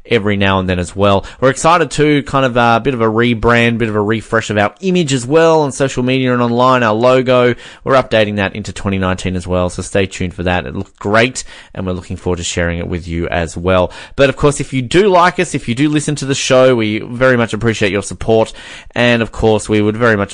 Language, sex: English, male